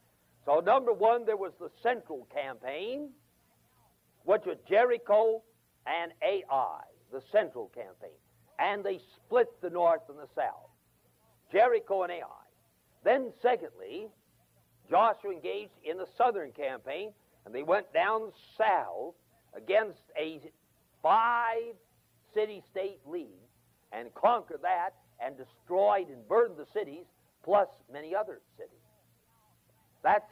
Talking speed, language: 115 wpm, English